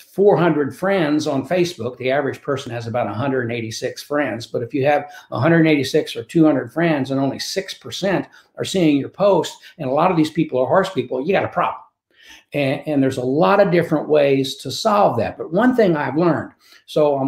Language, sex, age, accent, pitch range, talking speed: English, male, 60-79, American, 130-180 Hz, 200 wpm